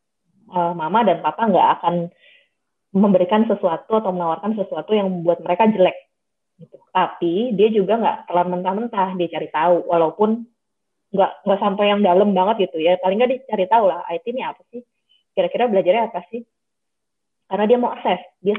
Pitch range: 175-215 Hz